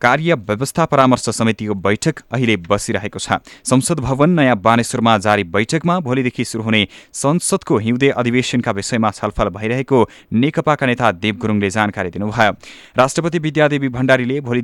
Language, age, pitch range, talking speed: English, 20-39, 105-140 Hz, 160 wpm